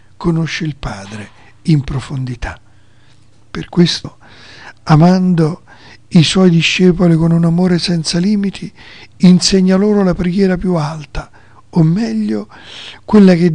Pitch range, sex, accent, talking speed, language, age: 115-180 Hz, male, native, 115 wpm, Italian, 50-69